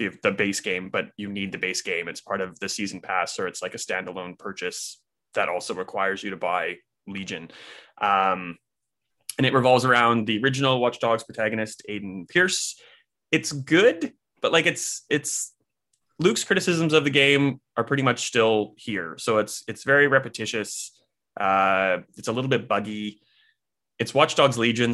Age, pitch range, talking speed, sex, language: 20-39, 100-125 Hz, 175 wpm, male, English